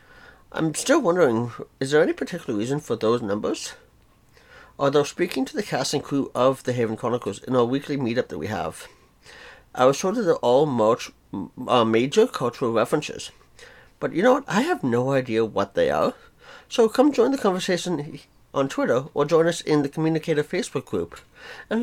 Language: English